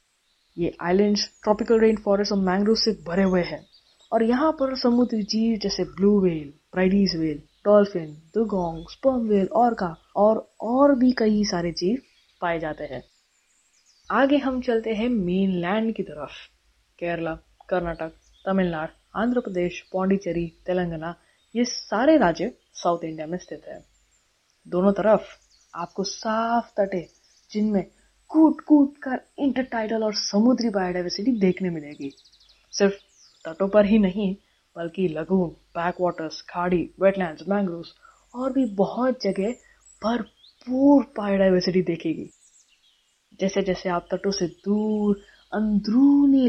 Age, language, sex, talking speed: 20-39, Hindi, female, 130 wpm